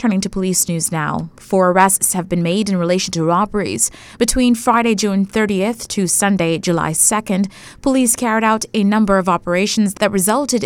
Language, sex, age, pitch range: English, female, 20-39, 175-220 Hz